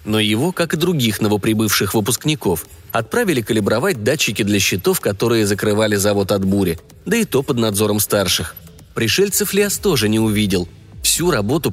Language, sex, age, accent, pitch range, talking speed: Russian, male, 30-49, native, 105-160 Hz, 155 wpm